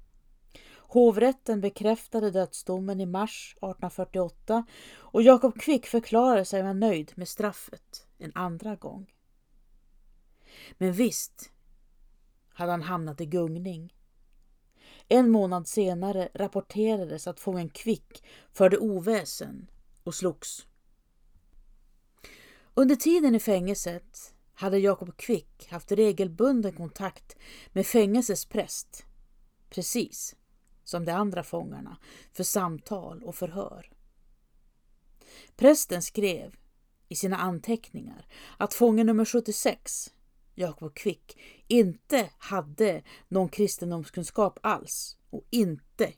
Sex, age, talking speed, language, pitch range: female, 30-49, 95 wpm, Swedish, 175-220 Hz